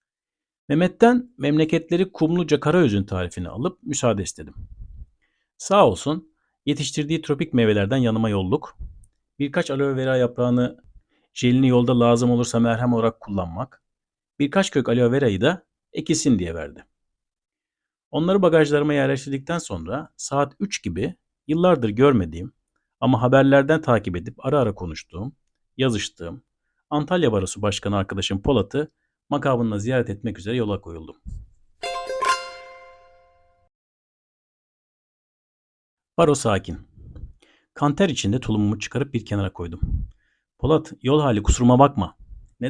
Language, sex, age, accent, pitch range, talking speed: Turkish, male, 50-69, native, 100-150 Hz, 110 wpm